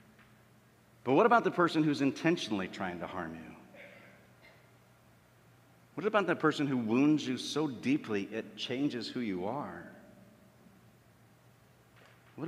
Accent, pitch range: American, 110-135 Hz